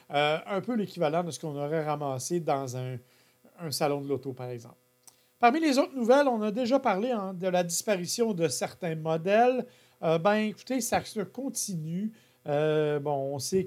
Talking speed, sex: 180 wpm, male